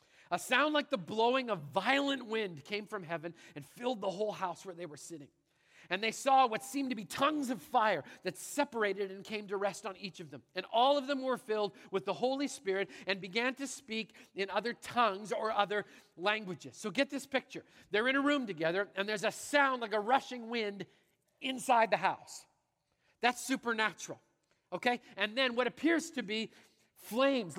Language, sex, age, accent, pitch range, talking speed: English, male, 40-59, American, 185-245 Hz, 195 wpm